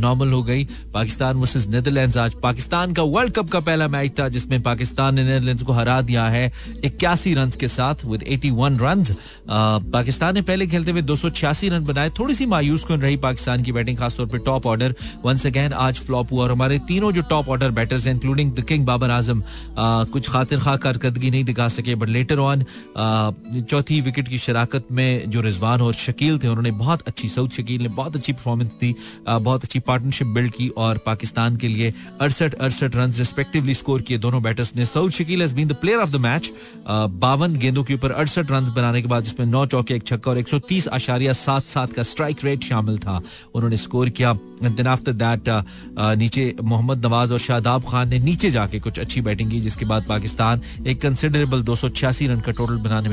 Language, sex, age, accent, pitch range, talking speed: Hindi, male, 30-49, native, 120-145 Hz, 65 wpm